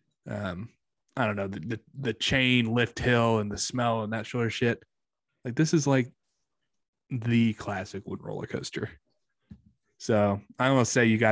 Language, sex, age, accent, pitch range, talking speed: English, male, 20-39, American, 105-130 Hz, 175 wpm